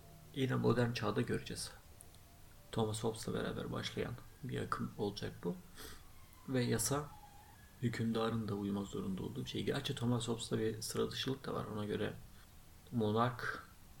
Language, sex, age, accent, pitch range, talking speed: Turkish, male, 30-49, native, 95-120 Hz, 135 wpm